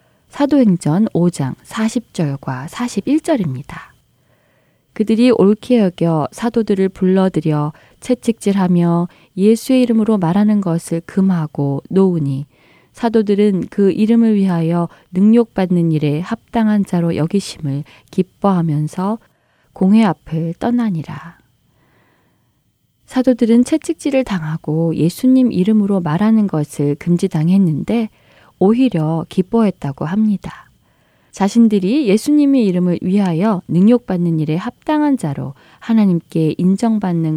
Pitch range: 160-225 Hz